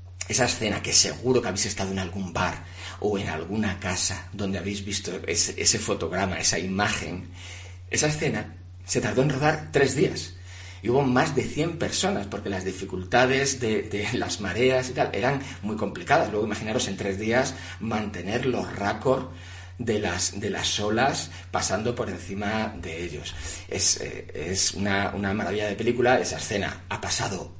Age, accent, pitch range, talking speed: 40-59, Spanish, 90-115 Hz, 170 wpm